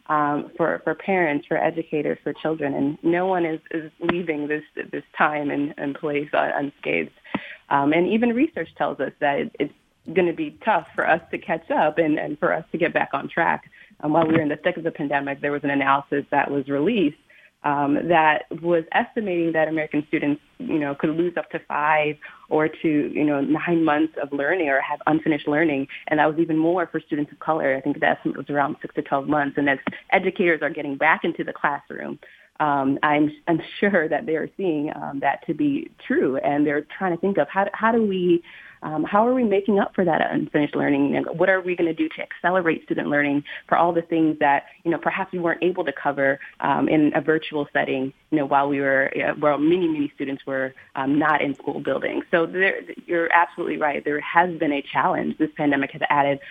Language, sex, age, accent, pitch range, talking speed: English, female, 30-49, American, 145-175 Hz, 220 wpm